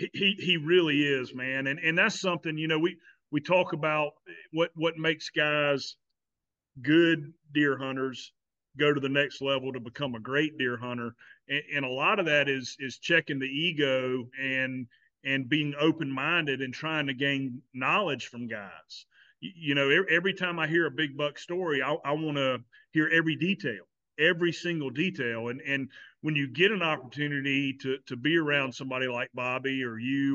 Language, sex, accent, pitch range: English, male, American, 130-160 Hz